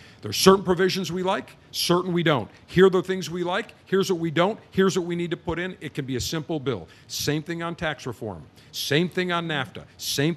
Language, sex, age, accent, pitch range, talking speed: English, male, 50-69, American, 120-175 Hz, 245 wpm